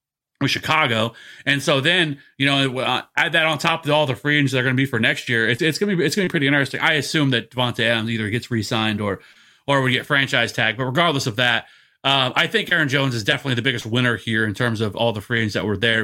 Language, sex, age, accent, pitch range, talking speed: English, male, 30-49, American, 125-155 Hz, 275 wpm